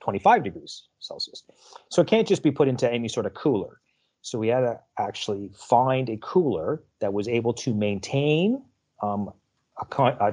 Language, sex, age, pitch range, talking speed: English, male, 30-49, 95-115 Hz, 175 wpm